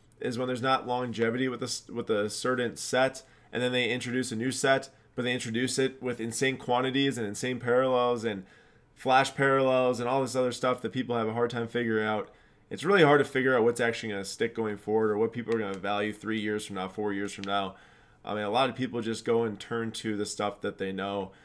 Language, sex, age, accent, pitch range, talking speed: English, male, 20-39, American, 105-125 Hz, 245 wpm